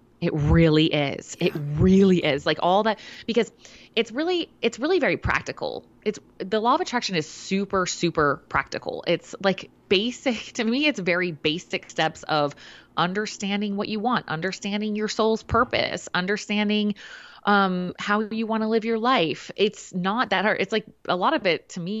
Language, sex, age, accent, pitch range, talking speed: English, female, 20-39, American, 155-210 Hz, 175 wpm